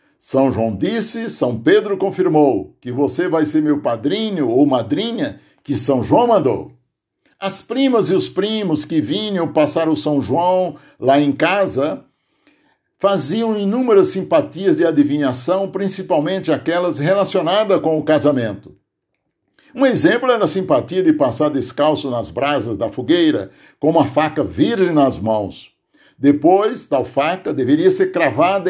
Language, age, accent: Portuguese, 60-79, Brazilian